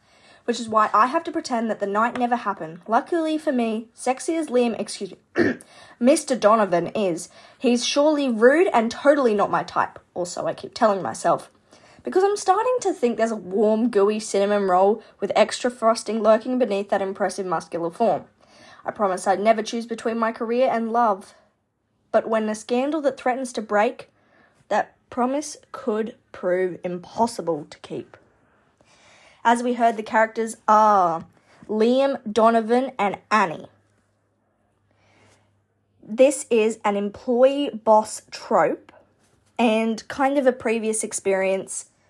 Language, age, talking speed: English, 10-29, 145 wpm